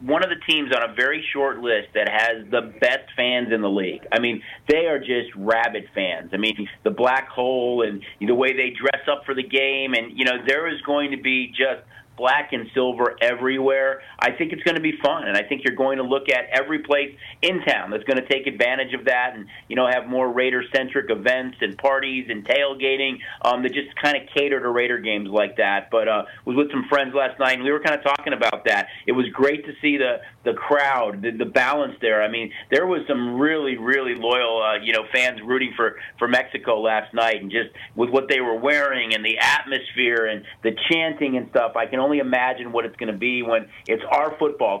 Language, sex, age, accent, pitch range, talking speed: English, male, 40-59, American, 115-140 Hz, 235 wpm